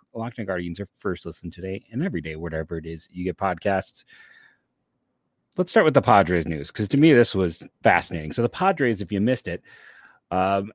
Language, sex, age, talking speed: English, male, 30-49, 195 wpm